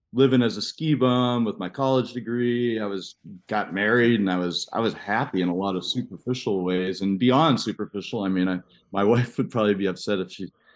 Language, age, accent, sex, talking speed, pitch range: English, 40-59, American, male, 220 wpm, 95-120 Hz